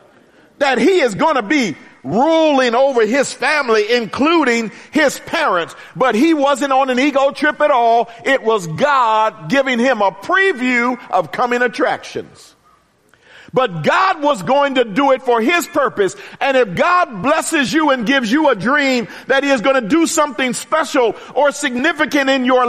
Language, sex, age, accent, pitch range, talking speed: English, male, 50-69, American, 245-295 Hz, 170 wpm